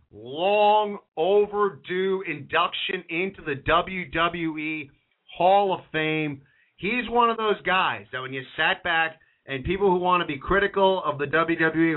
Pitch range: 125-170 Hz